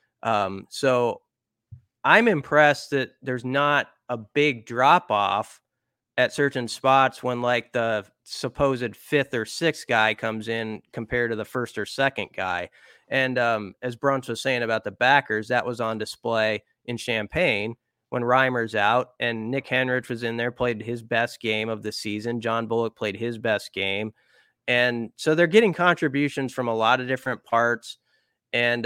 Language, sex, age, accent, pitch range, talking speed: English, male, 30-49, American, 110-125 Hz, 165 wpm